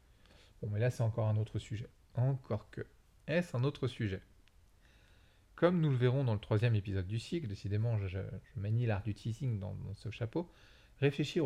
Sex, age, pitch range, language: male, 40-59, 105-130 Hz, French